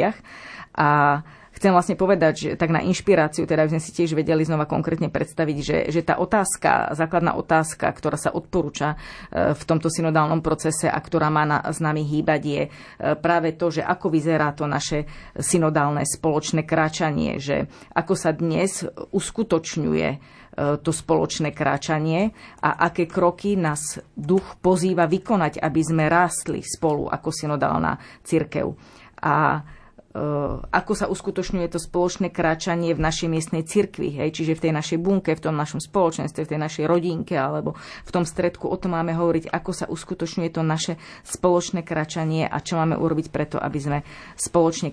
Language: Slovak